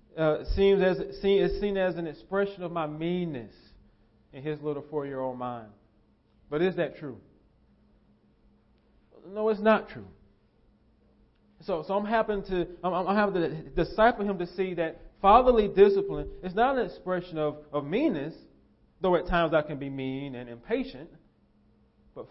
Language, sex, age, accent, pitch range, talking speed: English, male, 30-49, American, 110-170 Hz, 155 wpm